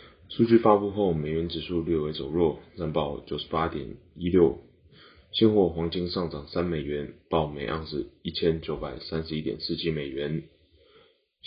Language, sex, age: Chinese, male, 20-39